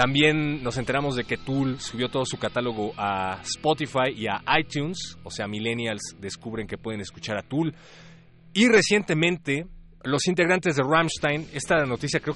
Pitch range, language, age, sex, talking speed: 115-150 Hz, Spanish, 30-49, male, 160 wpm